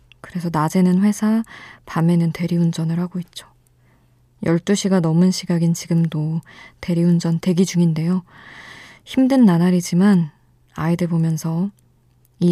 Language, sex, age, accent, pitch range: Korean, female, 20-39, native, 125-180 Hz